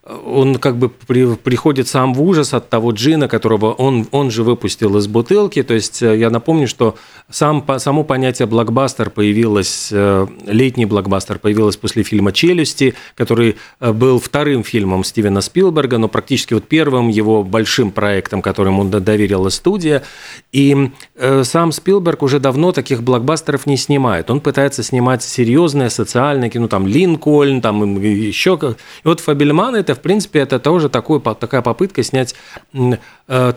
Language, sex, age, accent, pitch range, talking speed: Russian, male, 40-59, native, 115-145 Hz, 150 wpm